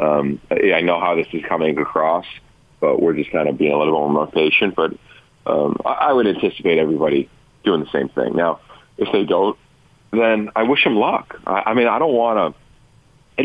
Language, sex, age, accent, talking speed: English, male, 40-59, American, 205 wpm